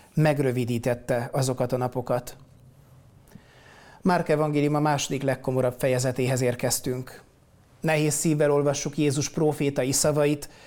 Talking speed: 95 wpm